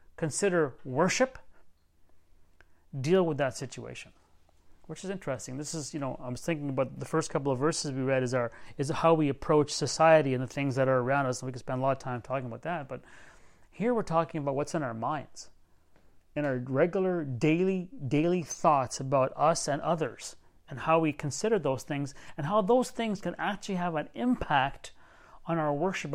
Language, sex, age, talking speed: English, male, 30-49, 195 wpm